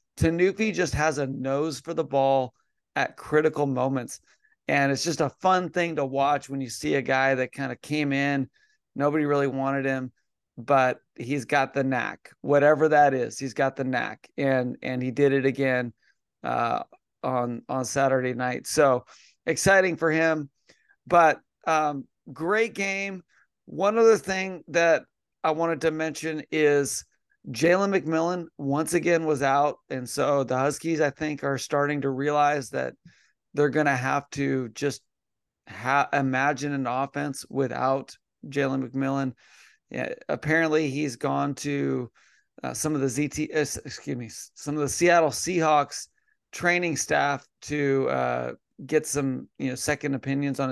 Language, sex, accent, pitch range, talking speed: English, male, American, 135-160 Hz, 155 wpm